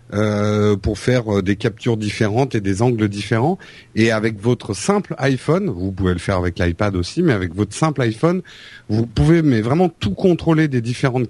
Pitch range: 105-140 Hz